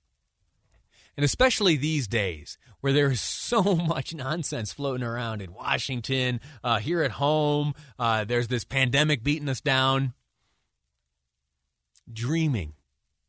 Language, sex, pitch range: English, male, 95-160 Hz